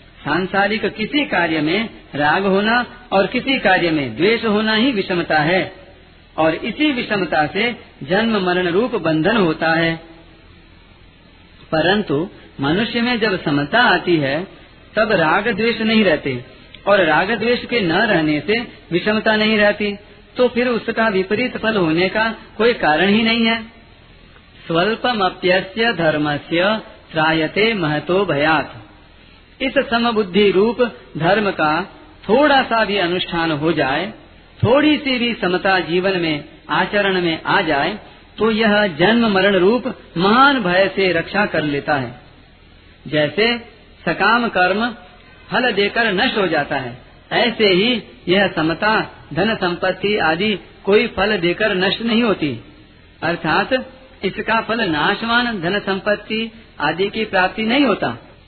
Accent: native